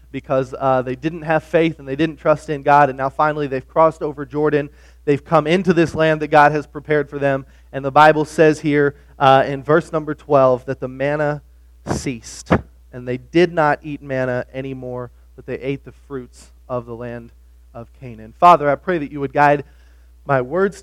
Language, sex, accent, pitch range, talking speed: English, male, American, 120-145 Hz, 200 wpm